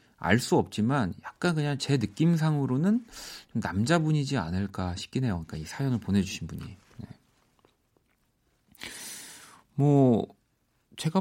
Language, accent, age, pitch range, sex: Korean, native, 40-59, 100-160 Hz, male